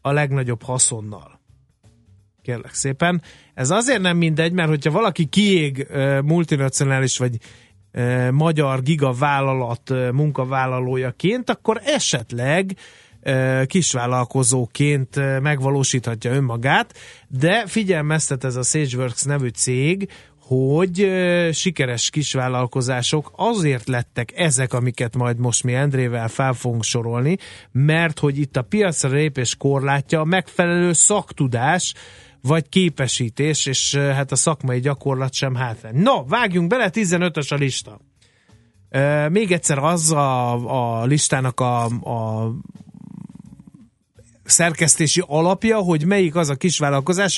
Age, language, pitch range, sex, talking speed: 30-49, Hungarian, 125-165 Hz, male, 110 wpm